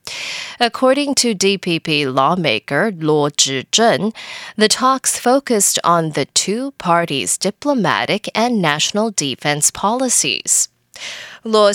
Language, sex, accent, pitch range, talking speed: English, female, American, 160-250 Hz, 95 wpm